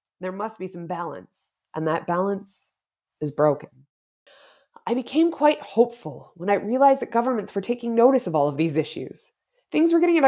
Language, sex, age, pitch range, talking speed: English, female, 20-39, 185-300 Hz, 180 wpm